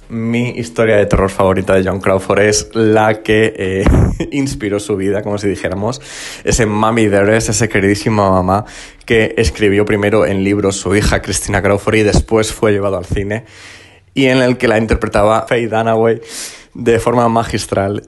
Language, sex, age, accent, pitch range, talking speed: Spanish, male, 20-39, Spanish, 100-115 Hz, 175 wpm